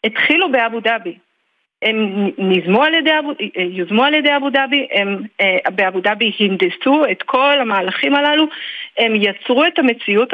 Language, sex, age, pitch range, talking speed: Hebrew, female, 40-59, 215-290 Hz, 140 wpm